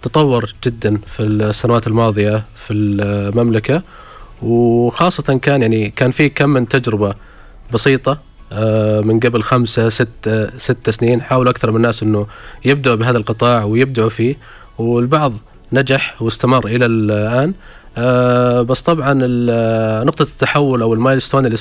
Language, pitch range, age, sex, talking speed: Arabic, 110-135 Hz, 20-39, male, 125 wpm